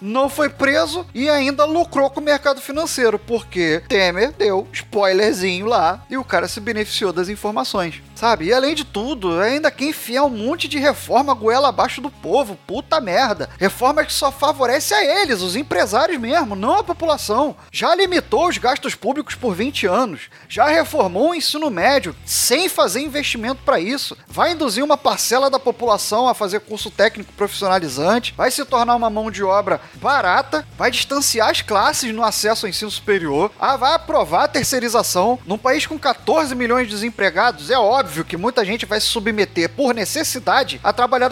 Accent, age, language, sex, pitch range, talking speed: Brazilian, 30-49, English, male, 215-290 Hz, 175 wpm